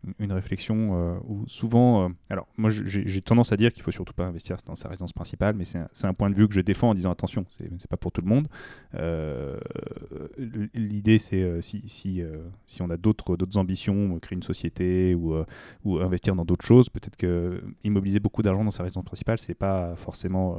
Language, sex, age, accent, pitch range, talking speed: French, male, 20-39, French, 90-110 Hz, 225 wpm